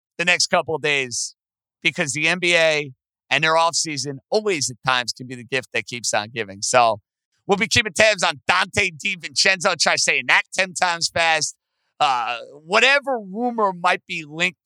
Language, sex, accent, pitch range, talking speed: English, male, American, 125-170 Hz, 175 wpm